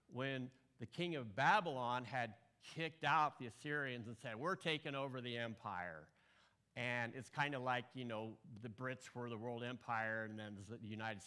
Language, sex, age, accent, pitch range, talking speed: English, male, 50-69, American, 120-155 Hz, 180 wpm